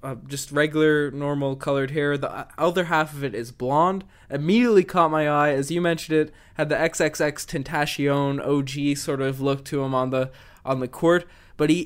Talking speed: 190 wpm